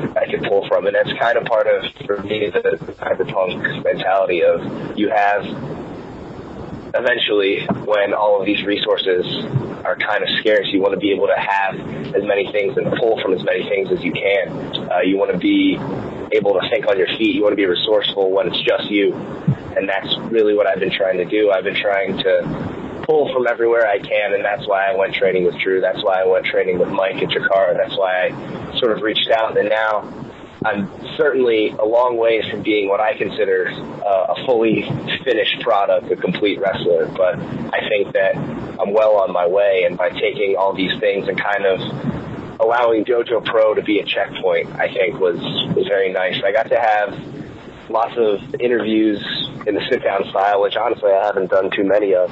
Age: 20-39